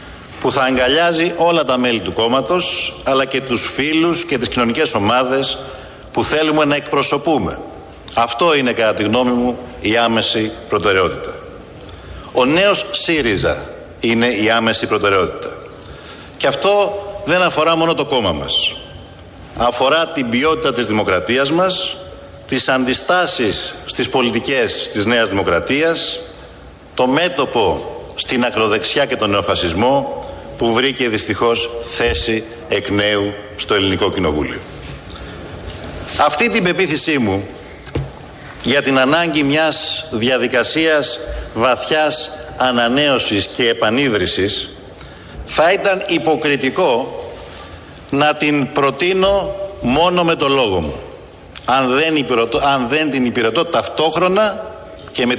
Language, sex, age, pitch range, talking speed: Greek, male, 60-79, 115-165 Hz, 115 wpm